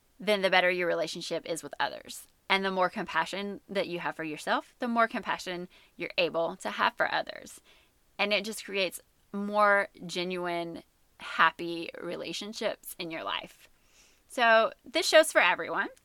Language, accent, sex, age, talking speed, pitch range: English, American, female, 20-39, 155 wpm, 180-240 Hz